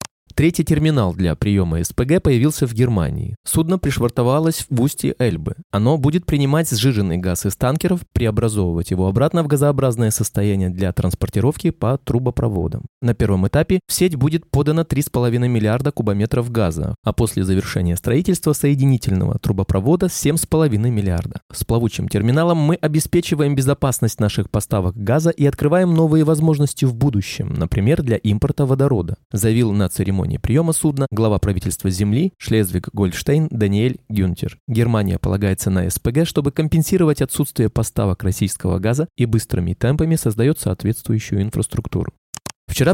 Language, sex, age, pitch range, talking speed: Russian, male, 20-39, 105-150 Hz, 135 wpm